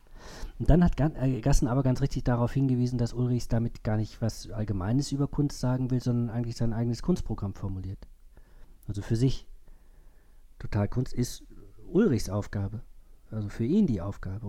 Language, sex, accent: German, male, German